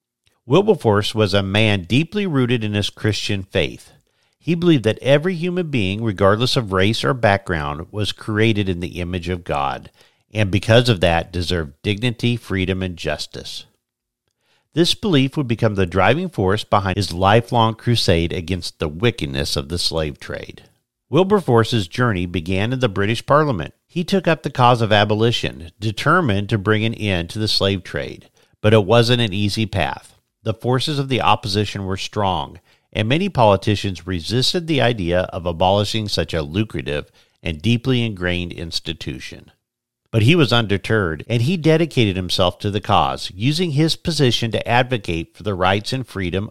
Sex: male